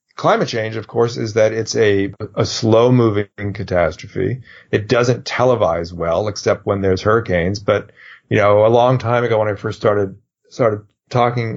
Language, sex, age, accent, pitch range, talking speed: English, male, 30-49, American, 100-115 Hz, 165 wpm